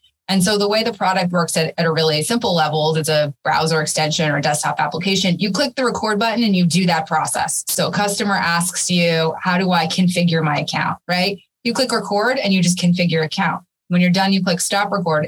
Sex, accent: female, American